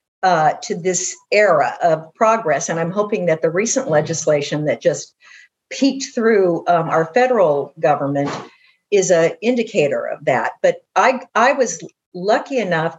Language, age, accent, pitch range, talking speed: English, 50-69, American, 160-200 Hz, 150 wpm